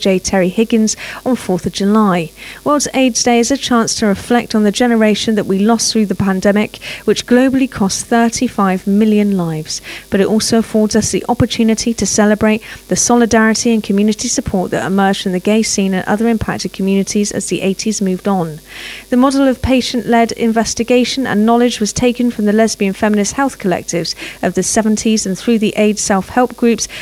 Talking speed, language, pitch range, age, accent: 185 wpm, English, 205-235 Hz, 40-59, British